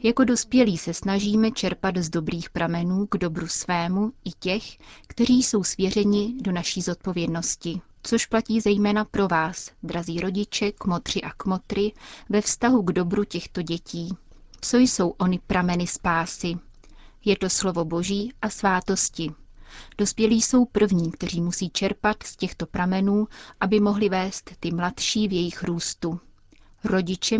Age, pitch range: 30-49, 175-210 Hz